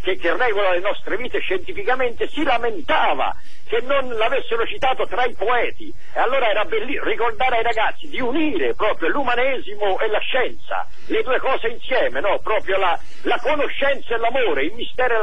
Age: 50-69